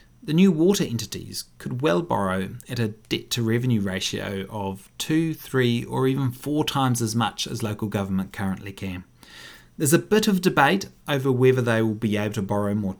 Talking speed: 180 wpm